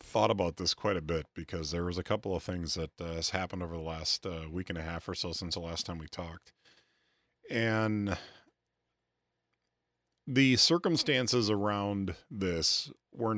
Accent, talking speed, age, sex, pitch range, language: American, 175 wpm, 40-59, male, 85-105 Hz, English